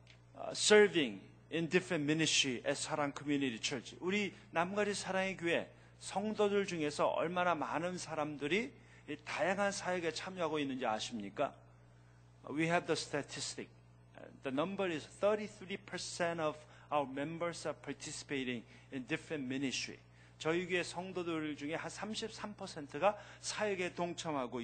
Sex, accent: male, native